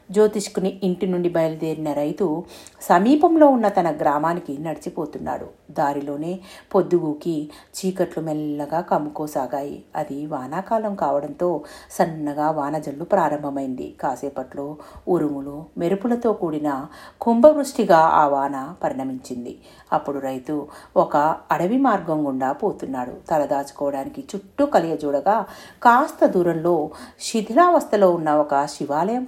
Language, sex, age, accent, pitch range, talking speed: Telugu, female, 50-69, native, 150-200 Hz, 95 wpm